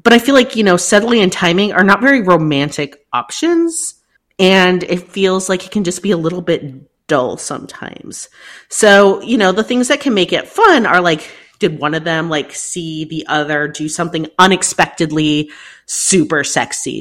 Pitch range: 160-240 Hz